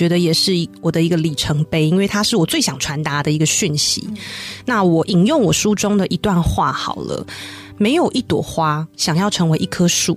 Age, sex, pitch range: 30-49, female, 160-205 Hz